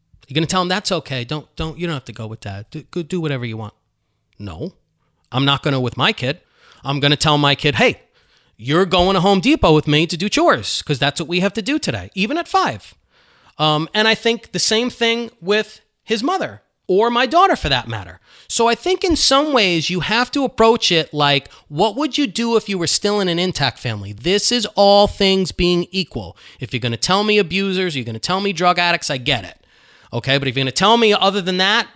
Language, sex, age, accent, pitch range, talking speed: English, male, 30-49, American, 135-200 Hz, 235 wpm